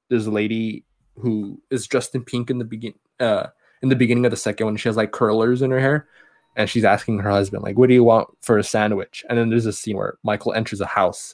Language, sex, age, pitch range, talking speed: English, male, 20-39, 105-125 Hz, 260 wpm